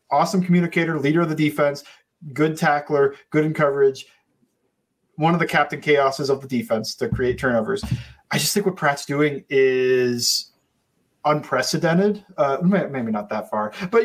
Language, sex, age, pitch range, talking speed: English, male, 30-49, 130-180 Hz, 155 wpm